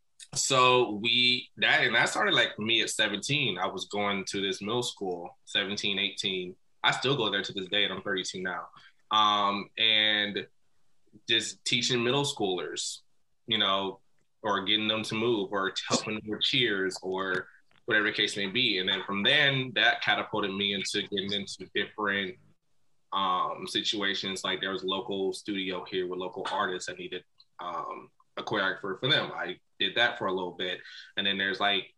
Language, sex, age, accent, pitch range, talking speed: English, male, 20-39, American, 95-110 Hz, 180 wpm